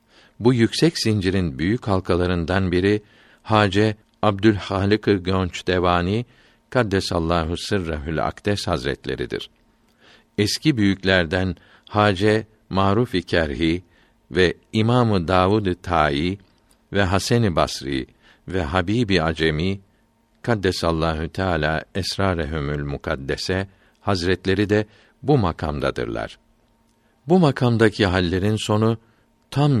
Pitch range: 85-110 Hz